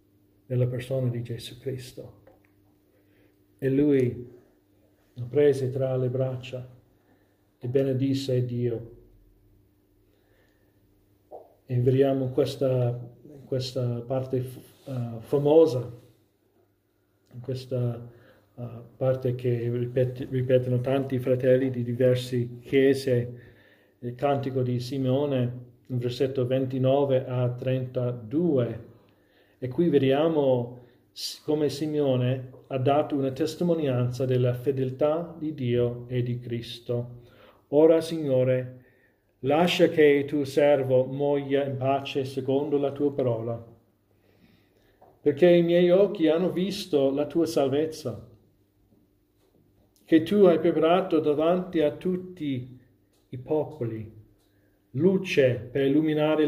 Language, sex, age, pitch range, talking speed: Italian, male, 40-59, 120-140 Hz, 100 wpm